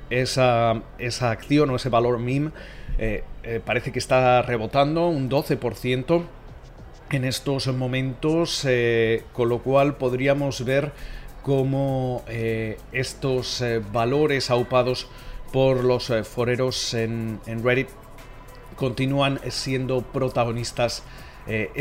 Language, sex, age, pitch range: Spanish, male, 40-59, 115-135 Hz